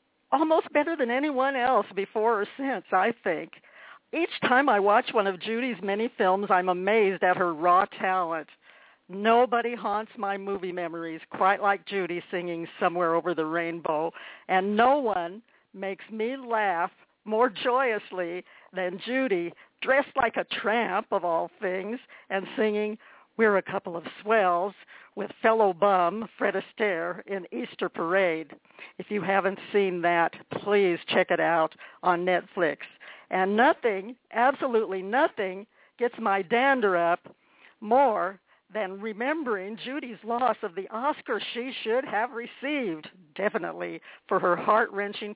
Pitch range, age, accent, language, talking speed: 185-235 Hz, 60-79, American, English, 140 wpm